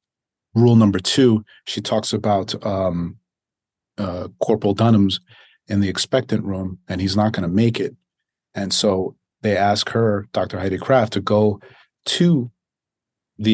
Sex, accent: male, American